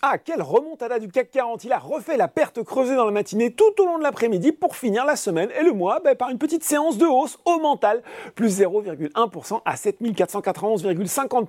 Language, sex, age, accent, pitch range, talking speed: French, male, 40-59, French, 195-275 Hz, 210 wpm